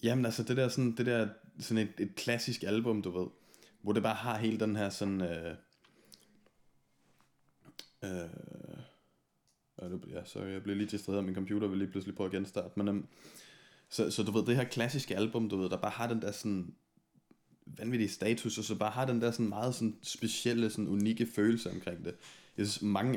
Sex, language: male, Danish